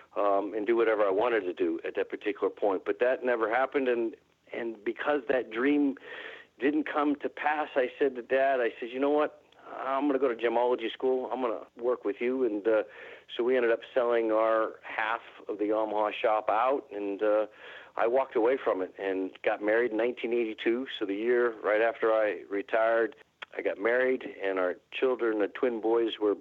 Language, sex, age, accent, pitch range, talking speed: English, male, 50-69, American, 110-150 Hz, 205 wpm